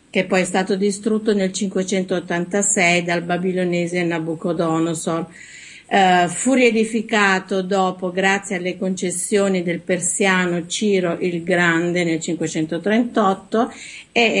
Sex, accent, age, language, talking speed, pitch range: female, native, 50-69, Italian, 105 wpm, 175-205 Hz